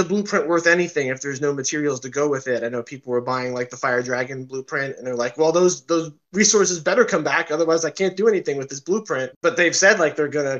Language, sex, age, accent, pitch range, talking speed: English, male, 20-39, American, 130-175 Hz, 255 wpm